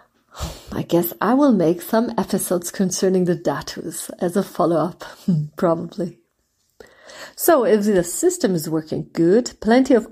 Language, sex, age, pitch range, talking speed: English, female, 40-59, 175-225 Hz, 135 wpm